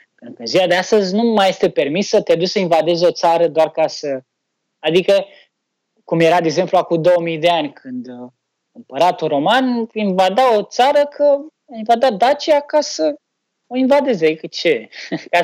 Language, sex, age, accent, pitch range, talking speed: Romanian, male, 20-39, native, 150-205 Hz, 165 wpm